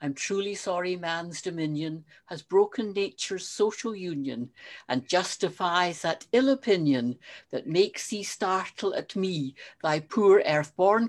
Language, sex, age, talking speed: English, female, 60-79, 135 wpm